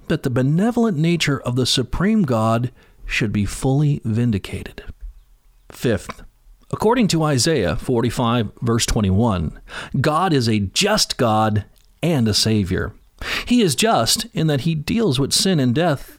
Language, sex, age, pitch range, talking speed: English, male, 40-59, 120-185 Hz, 135 wpm